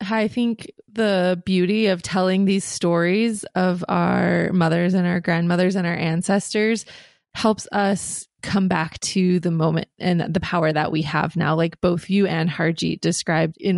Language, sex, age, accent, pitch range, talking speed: English, female, 20-39, American, 175-200 Hz, 165 wpm